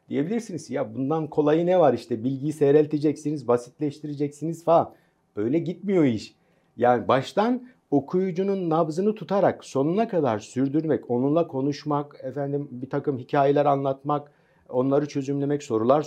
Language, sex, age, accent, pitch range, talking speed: Turkish, male, 60-79, native, 125-165 Hz, 120 wpm